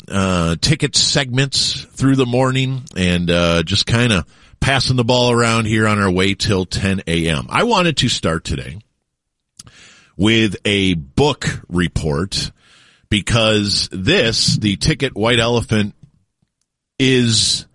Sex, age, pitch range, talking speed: male, 40-59, 85-115 Hz, 130 wpm